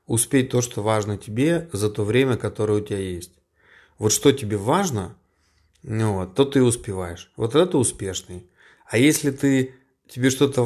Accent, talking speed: native, 165 wpm